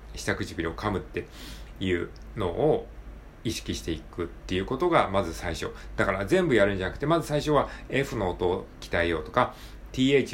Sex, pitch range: male, 95-145 Hz